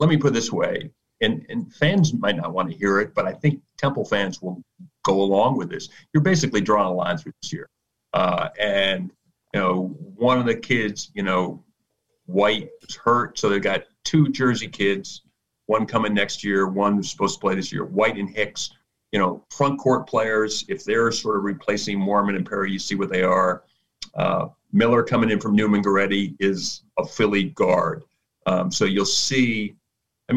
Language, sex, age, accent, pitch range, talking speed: English, male, 50-69, American, 100-150 Hz, 200 wpm